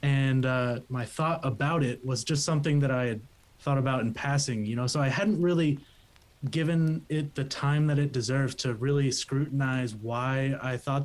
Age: 20-39